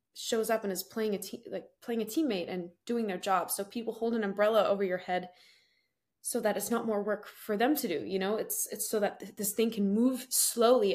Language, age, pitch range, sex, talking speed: English, 20-39, 190-225 Hz, female, 250 wpm